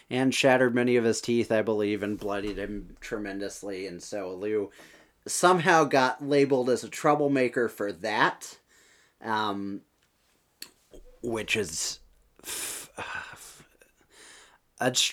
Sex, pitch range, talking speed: male, 100-130 Hz, 105 wpm